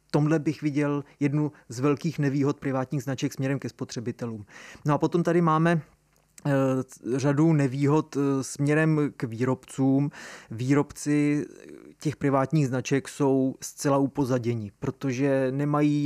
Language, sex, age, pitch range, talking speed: Czech, male, 30-49, 130-145 Hz, 115 wpm